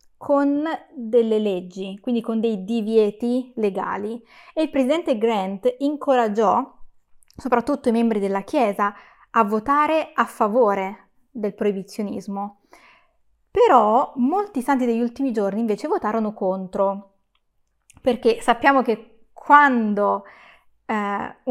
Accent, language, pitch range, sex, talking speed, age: native, Italian, 210-255 Hz, female, 105 wpm, 20-39